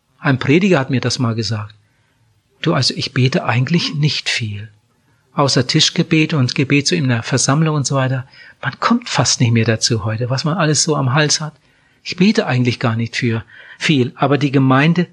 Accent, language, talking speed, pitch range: German, German, 200 wpm, 130-155 Hz